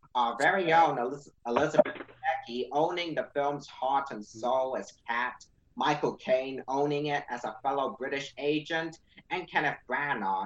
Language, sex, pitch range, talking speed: English, male, 130-155 Hz, 145 wpm